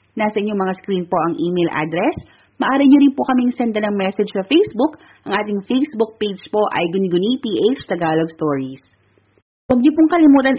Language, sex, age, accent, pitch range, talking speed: Filipino, female, 30-49, native, 180-230 Hz, 180 wpm